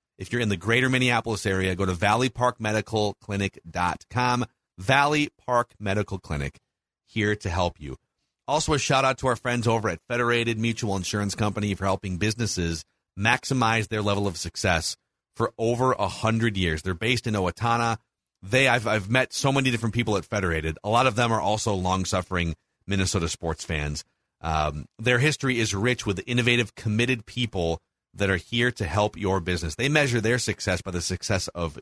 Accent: American